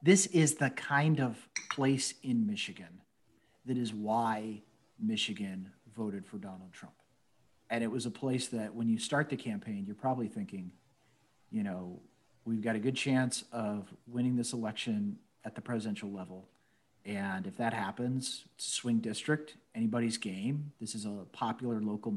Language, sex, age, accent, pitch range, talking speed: English, male, 40-59, American, 110-150 Hz, 160 wpm